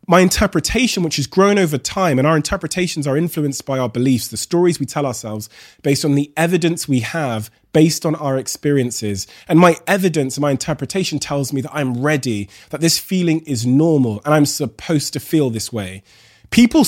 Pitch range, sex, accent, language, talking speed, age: 130-175 Hz, male, British, English, 190 wpm, 20-39